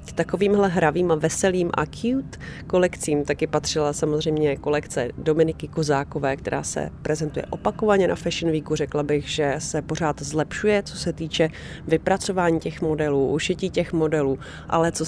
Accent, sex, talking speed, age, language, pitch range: native, female, 145 wpm, 30-49, Czech, 145-165 Hz